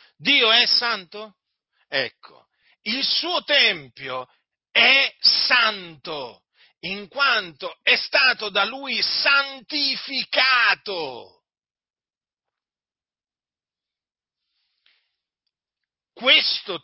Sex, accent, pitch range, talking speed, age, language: male, native, 185-260 Hz, 60 wpm, 40-59, Italian